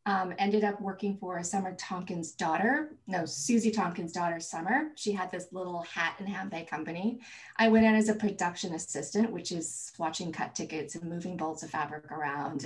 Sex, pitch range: female, 175-220 Hz